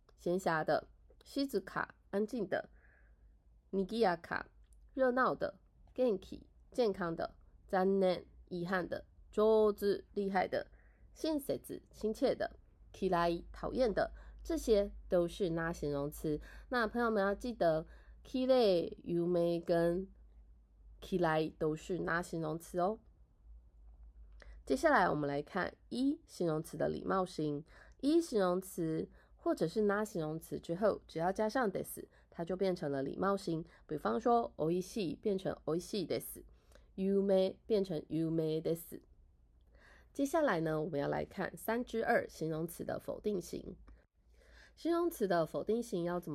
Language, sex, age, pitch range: Japanese, female, 20-39, 155-215 Hz